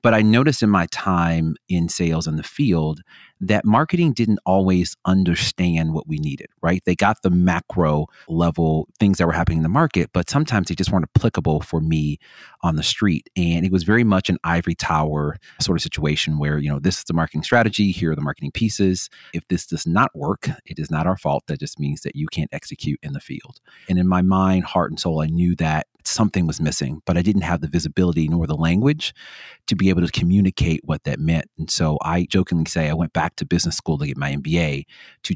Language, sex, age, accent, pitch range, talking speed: English, male, 30-49, American, 80-95 Hz, 225 wpm